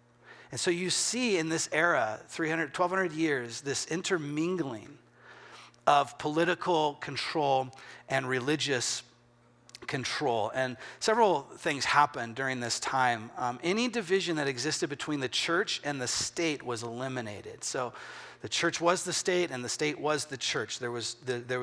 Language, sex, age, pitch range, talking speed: English, male, 40-59, 120-155 Hz, 140 wpm